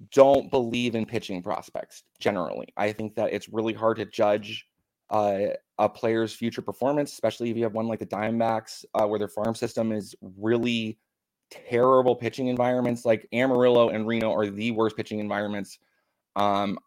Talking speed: 165 wpm